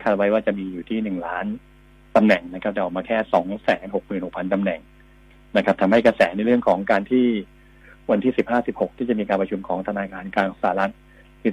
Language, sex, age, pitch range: Thai, male, 20-39, 95-115 Hz